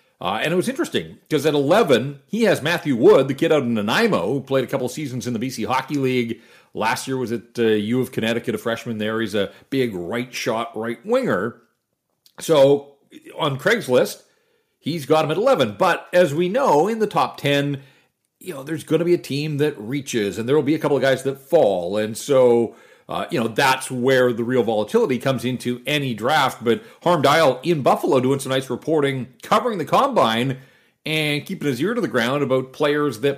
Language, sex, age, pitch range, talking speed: English, male, 40-59, 120-155 Hz, 210 wpm